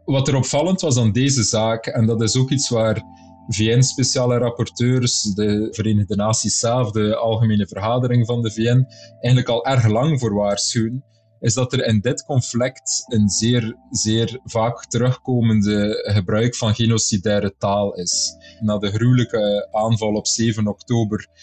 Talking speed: 150 wpm